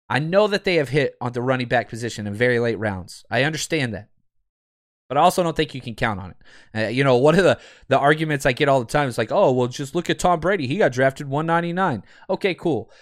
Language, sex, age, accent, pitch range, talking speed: English, male, 30-49, American, 120-160 Hz, 260 wpm